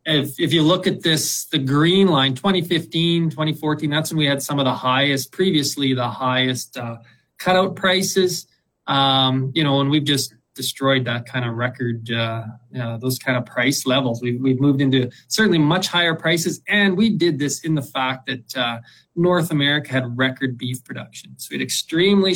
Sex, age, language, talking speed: male, 20-39, English, 190 wpm